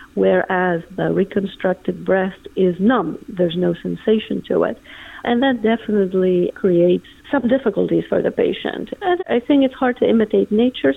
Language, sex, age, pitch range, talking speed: English, female, 50-69, 185-250 Hz, 150 wpm